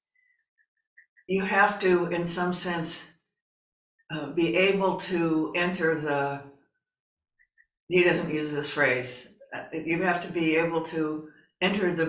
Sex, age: female, 60-79